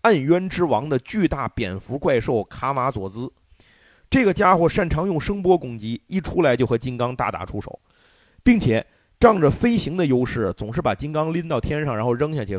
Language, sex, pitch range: Chinese, male, 120-175 Hz